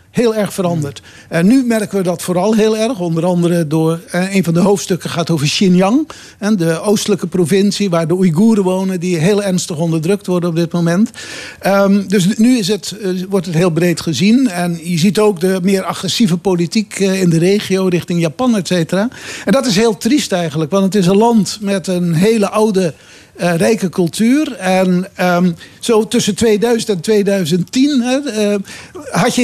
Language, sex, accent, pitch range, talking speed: Dutch, male, Dutch, 185-225 Hz, 180 wpm